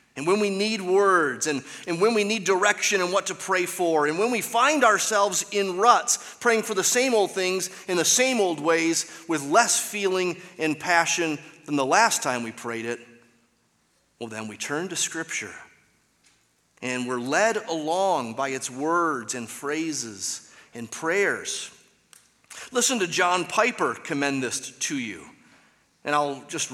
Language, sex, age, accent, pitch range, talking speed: English, male, 30-49, American, 130-185 Hz, 165 wpm